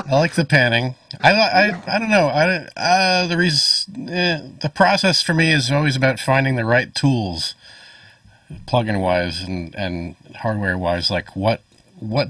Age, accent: 40-59, American